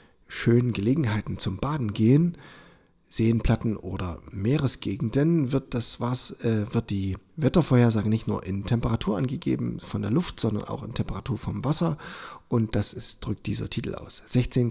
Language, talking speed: German, 150 wpm